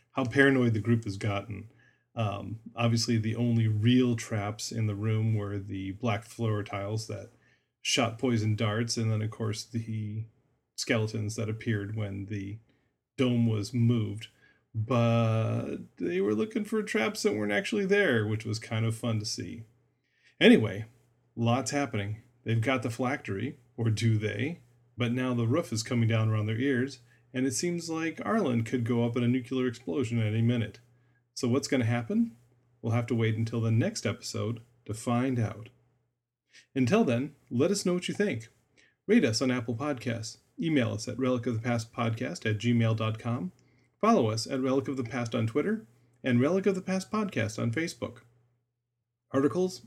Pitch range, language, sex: 110-125 Hz, English, male